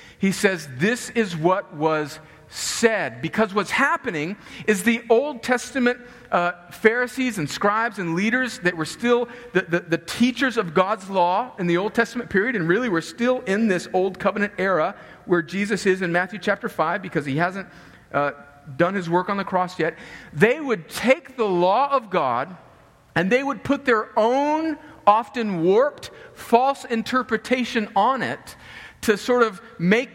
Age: 50-69